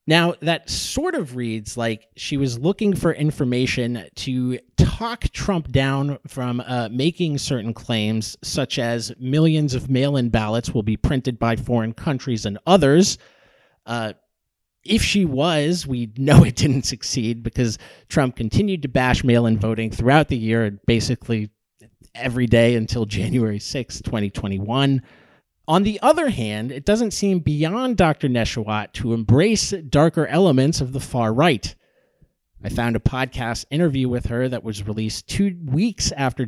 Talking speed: 150 wpm